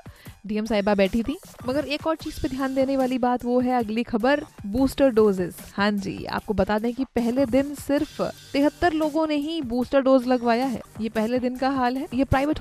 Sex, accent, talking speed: female, native, 210 wpm